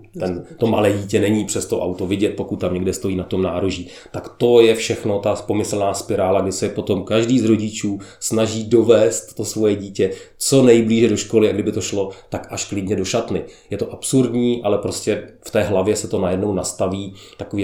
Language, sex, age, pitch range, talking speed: Czech, male, 30-49, 95-110 Hz, 195 wpm